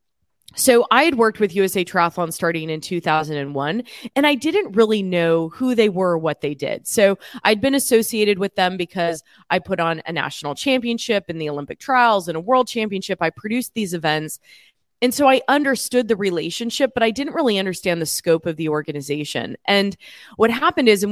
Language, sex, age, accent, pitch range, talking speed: English, female, 20-39, American, 170-230 Hz, 195 wpm